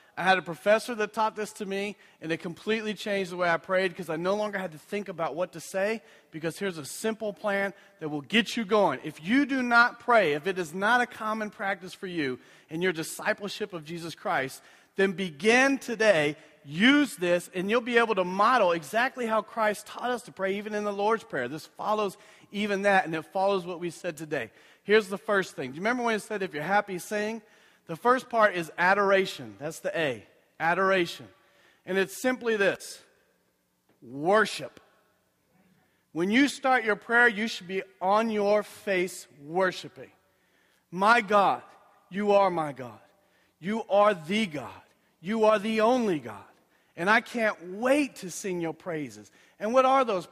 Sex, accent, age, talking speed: male, American, 40-59, 190 wpm